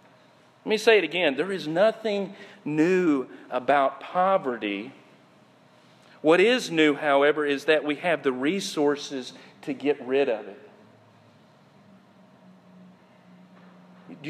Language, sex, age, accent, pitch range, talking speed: English, male, 40-59, American, 170-280 Hz, 115 wpm